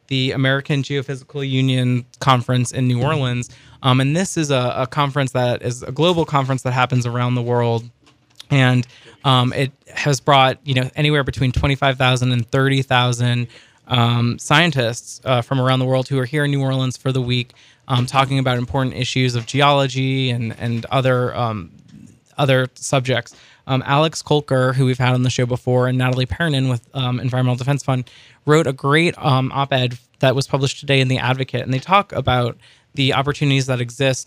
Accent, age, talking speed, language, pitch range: American, 20-39, 180 wpm, English, 125-140 Hz